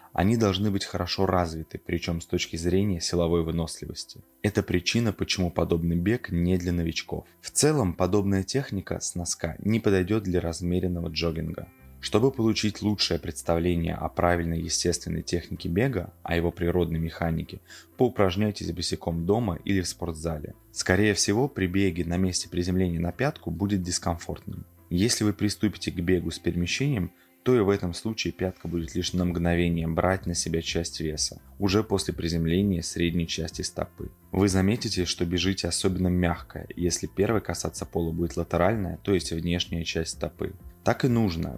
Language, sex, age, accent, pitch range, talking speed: Russian, male, 20-39, native, 85-100 Hz, 155 wpm